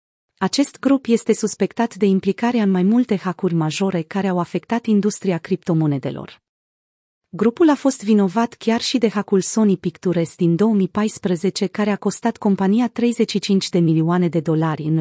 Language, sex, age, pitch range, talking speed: Romanian, female, 30-49, 180-220 Hz, 150 wpm